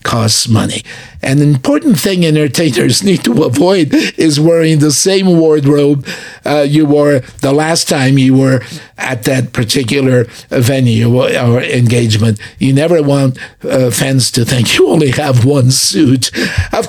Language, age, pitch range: English, 50-69, 125-150 Hz